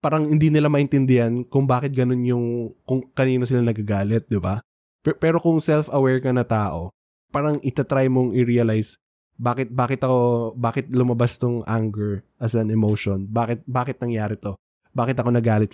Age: 20-39